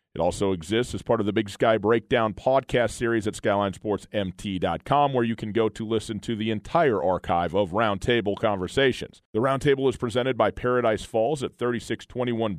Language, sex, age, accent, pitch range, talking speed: English, male, 40-59, American, 105-130 Hz, 170 wpm